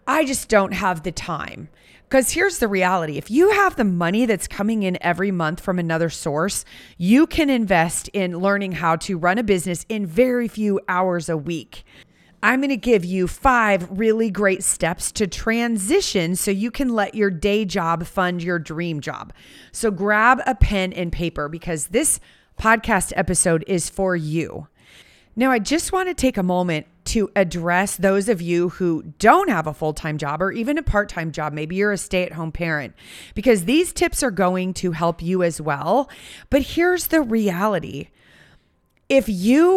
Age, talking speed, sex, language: 30-49, 180 wpm, female, English